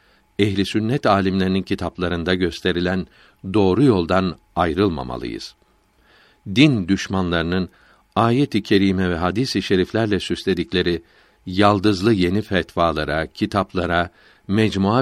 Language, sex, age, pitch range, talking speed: Turkish, male, 60-79, 90-120 Hz, 90 wpm